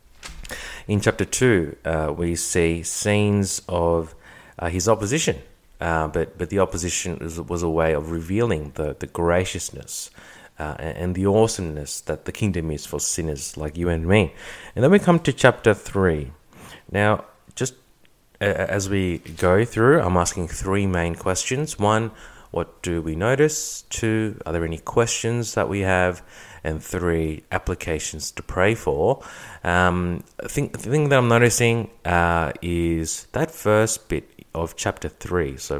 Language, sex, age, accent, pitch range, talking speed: English, male, 30-49, Australian, 80-110 Hz, 155 wpm